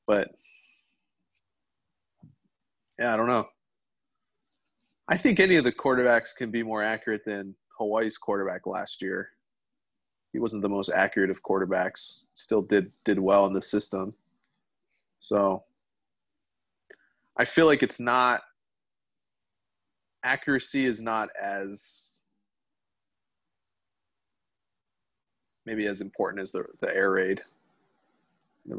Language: English